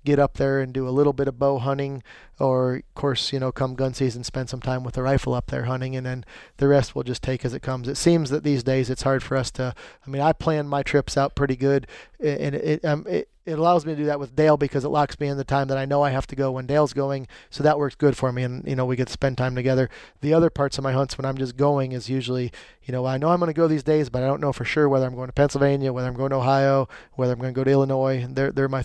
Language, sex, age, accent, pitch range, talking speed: English, male, 30-49, American, 130-150 Hz, 310 wpm